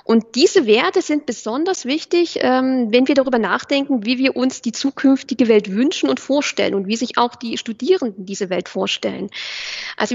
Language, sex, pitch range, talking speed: German, female, 225-290 Hz, 170 wpm